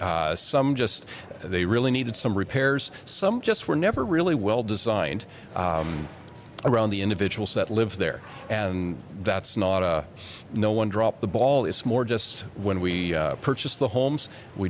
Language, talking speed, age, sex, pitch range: English, 165 wpm, 50-69, male, 90-120 Hz